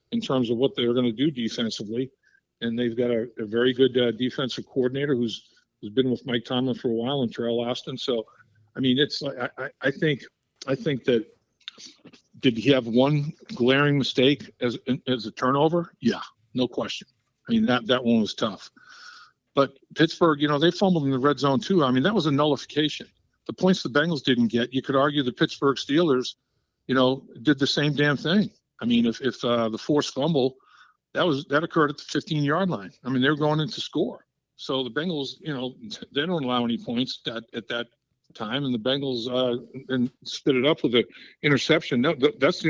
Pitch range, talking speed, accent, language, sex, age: 120-150 Hz, 210 wpm, American, English, male, 50-69